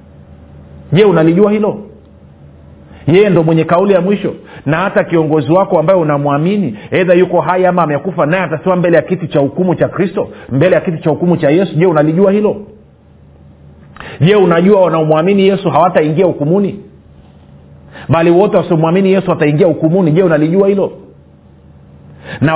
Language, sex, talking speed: Swahili, male, 145 wpm